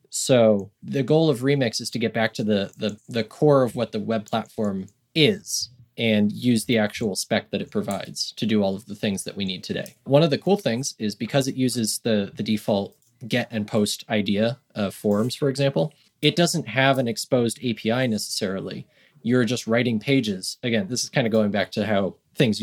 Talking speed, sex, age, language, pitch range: 210 wpm, male, 20-39, English, 105-135 Hz